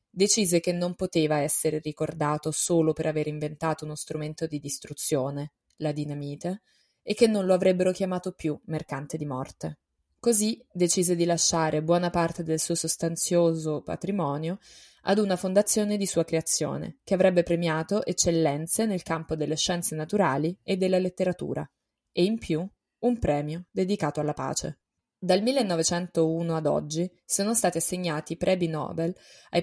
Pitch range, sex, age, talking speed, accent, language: 155-190 Hz, female, 20-39, 150 wpm, native, Italian